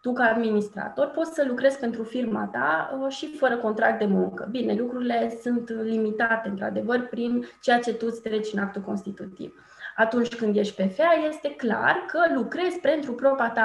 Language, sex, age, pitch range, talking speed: Romanian, female, 20-39, 215-265 Hz, 180 wpm